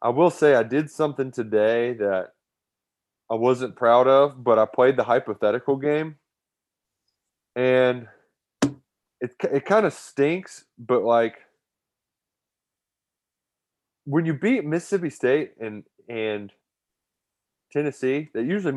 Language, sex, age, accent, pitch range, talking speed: English, male, 20-39, American, 110-145 Hz, 115 wpm